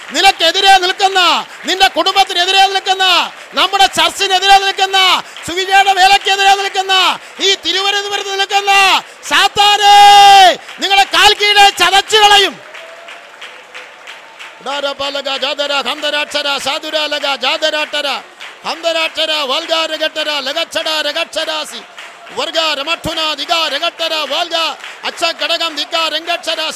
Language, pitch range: Malayalam, 310-380 Hz